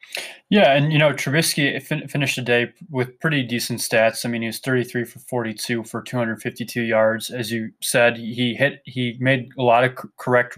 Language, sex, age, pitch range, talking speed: English, male, 20-39, 115-135 Hz, 185 wpm